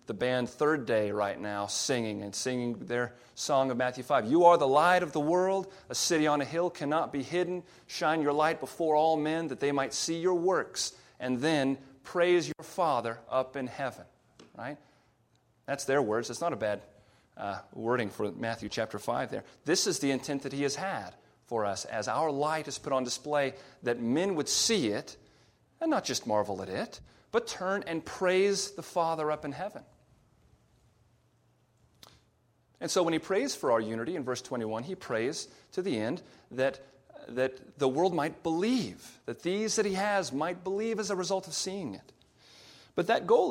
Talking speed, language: 190 wpm, English